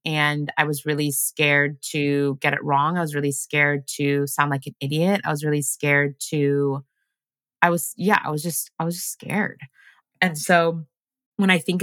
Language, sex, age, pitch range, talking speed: English, female, 20-39, 145-175 Hz, 195 wpm